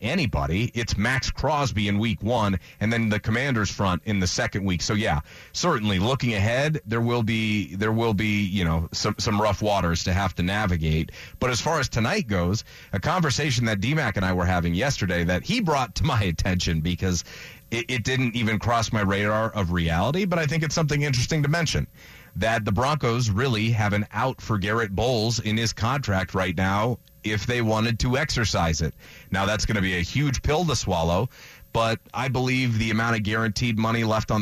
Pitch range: 100-125 Hz